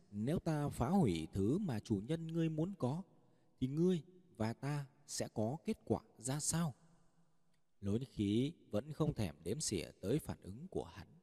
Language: Vietnamese